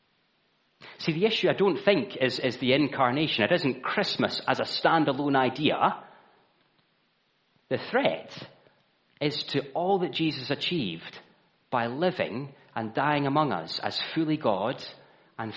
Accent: British